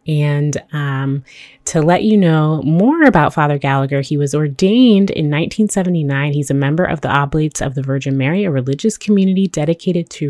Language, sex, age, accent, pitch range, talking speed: English, female, 20-39, American, 135-175 Hz, 175 wpm